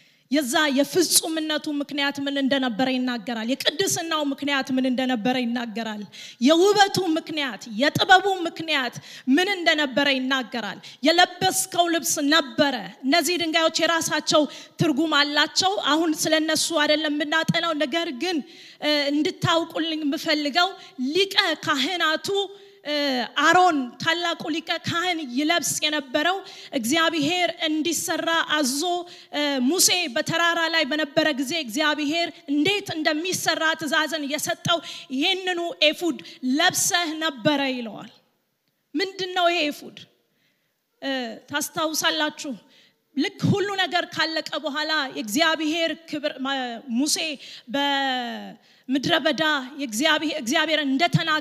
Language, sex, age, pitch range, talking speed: English, female, 20-39, 285-335 Hz, 85 wpm